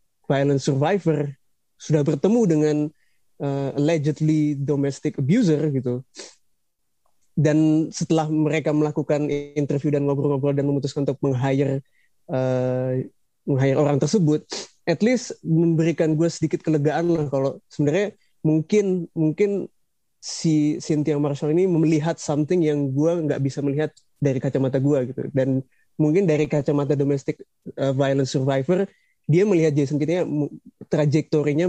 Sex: male